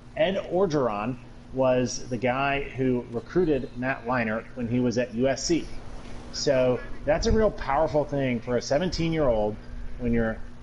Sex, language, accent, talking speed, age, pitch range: male, English, American, 140 wpm, 30-49, 115-140 Hz